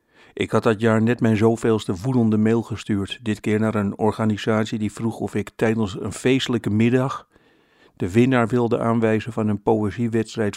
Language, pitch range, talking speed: Dutch, 105-115 Hz, 170 wpm